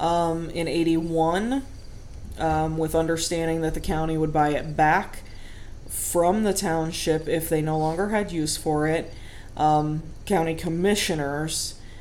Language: English